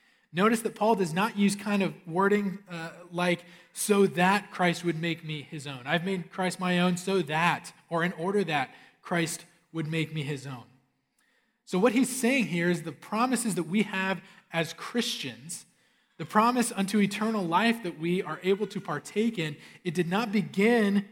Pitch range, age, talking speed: 165-205 Hz, 20-39, 185 wpm